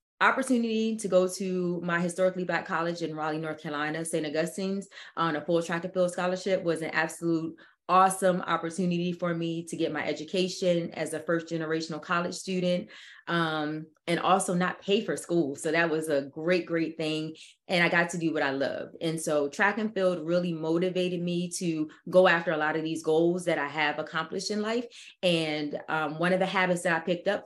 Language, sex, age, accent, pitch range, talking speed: English, female, 30-49, American, 155-180 Hz, 200 wpm